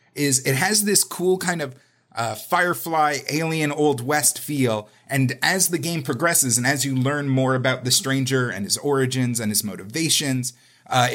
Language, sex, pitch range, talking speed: English, male, 125-155 Hz, 180 wpm